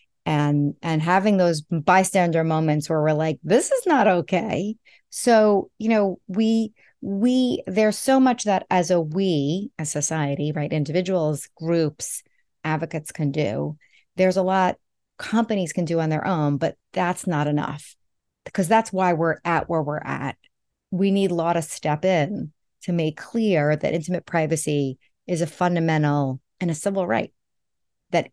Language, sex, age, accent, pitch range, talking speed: English, female, 30-49, American, 155-200 Hz, 155 wpm